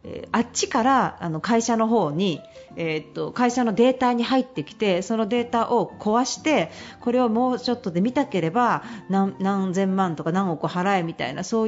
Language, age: Japanese, 40-59